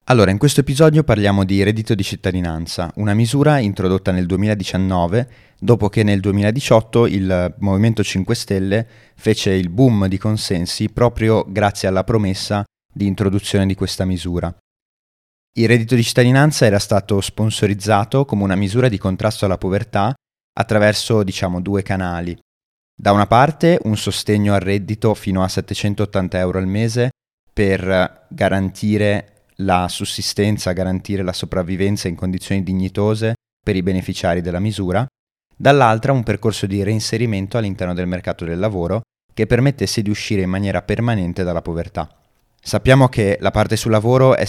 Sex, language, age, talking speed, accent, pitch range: male, Italian, 30-49, 145 wpm, native, 95-110 Hz